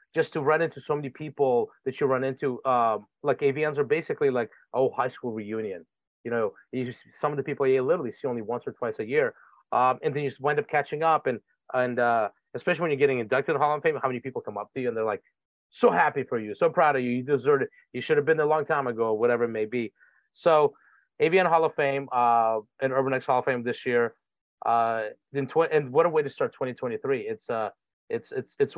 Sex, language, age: male, English, 30-49